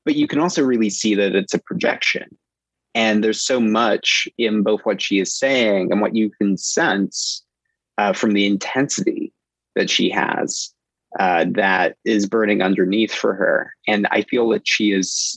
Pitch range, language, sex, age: 95-110 Hz, English, male, 30-49